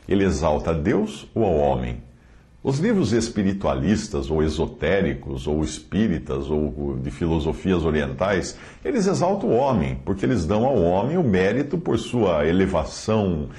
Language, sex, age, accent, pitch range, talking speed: Portuguese, male, 60-79, Brazilian, 80-120 Hz, 140 wpm